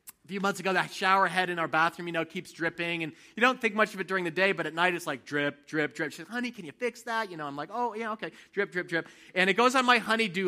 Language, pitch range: English, 175-230 Hz